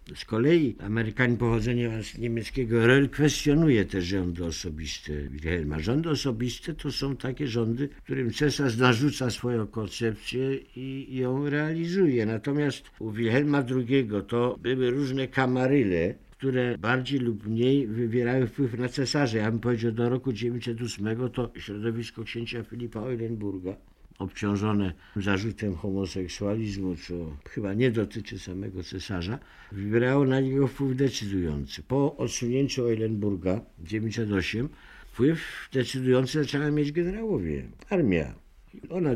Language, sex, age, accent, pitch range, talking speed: Polish, male, 60-79, native, 100-130 Hz, 120 wpm